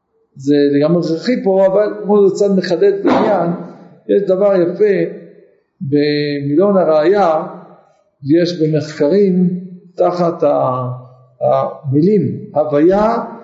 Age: 50-69